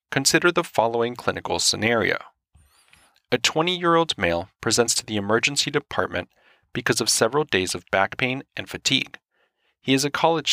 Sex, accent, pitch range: male, American, 110-145 Hz